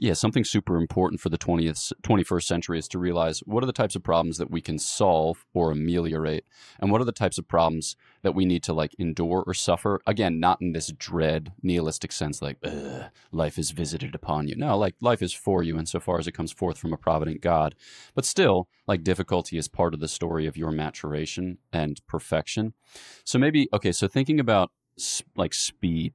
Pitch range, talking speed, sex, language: 85-100 Hz, 205 wpm, male, English